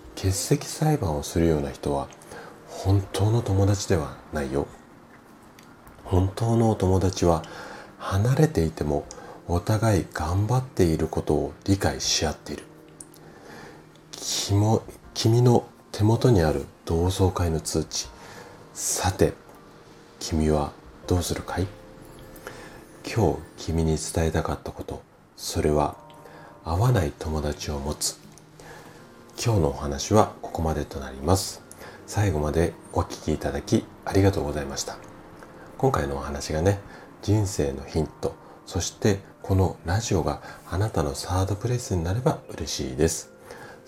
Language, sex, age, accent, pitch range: Japanese, male, 40-59, native, 80-105 Hz